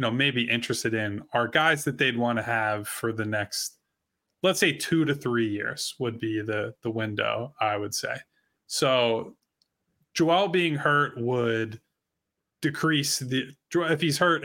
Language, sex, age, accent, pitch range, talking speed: English, male, 20-39, American, 115-145 Hz, 160 wpm